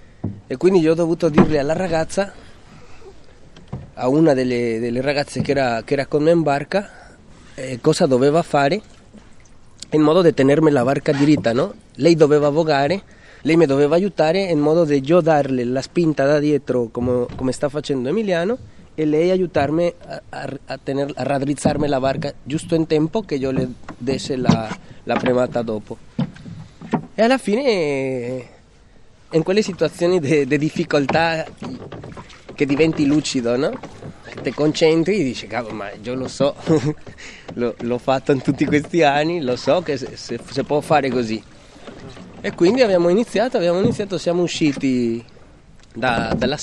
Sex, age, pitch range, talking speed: male, 20-39, 130-165 Hz, 155 wpm